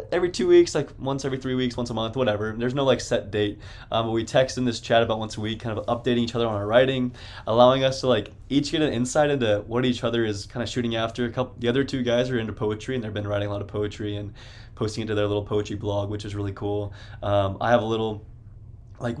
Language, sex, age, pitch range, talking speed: English, male, 20-39, 105-120 Hz, 270 wpm